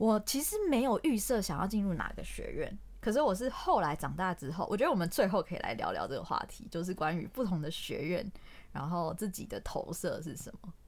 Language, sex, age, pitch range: Chinese, female, 20-39, 160-205 Hz